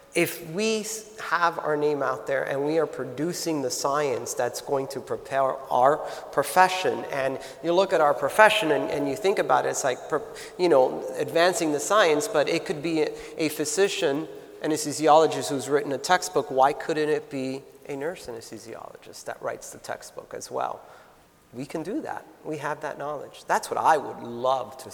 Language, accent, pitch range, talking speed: English, American, 135-185 Hz, 185 wpm